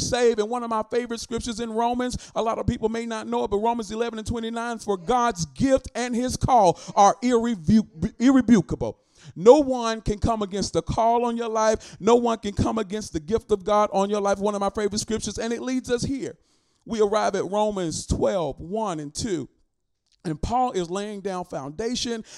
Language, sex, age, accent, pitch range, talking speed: English, male, 40-59, American, 185-230 Hz, 205 wpm